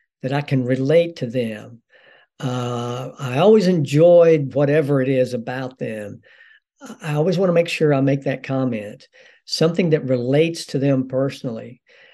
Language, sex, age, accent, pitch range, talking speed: English, male, 60-79, American, 130-175 Hz, 155 wpm